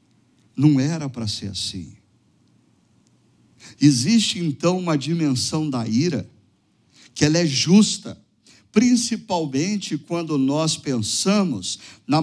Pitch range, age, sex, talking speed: 125-185 Hz, 50-69, male, 100 wpm